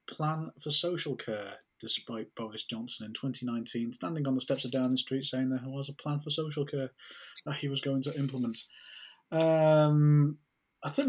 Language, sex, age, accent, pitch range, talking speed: English, male, 20-39, British, 115-140 Hz, 185 wpm